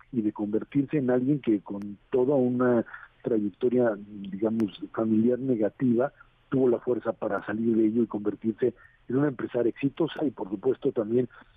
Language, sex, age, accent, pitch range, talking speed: Spanish, male, 50-69, Mexican, 110-130 Hz, 155 wpm